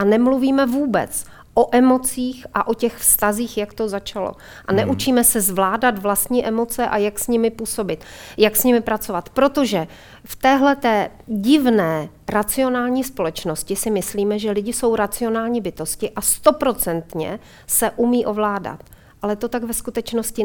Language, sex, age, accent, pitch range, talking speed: Czech, female, 40-59, native, 205-245 Hz, 145 wpm